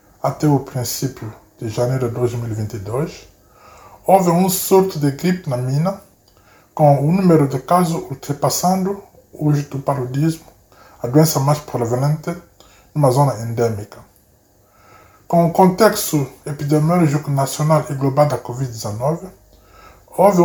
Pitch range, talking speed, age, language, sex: 120-160 Hz, 120 wpm, 20-39, Portuguese, male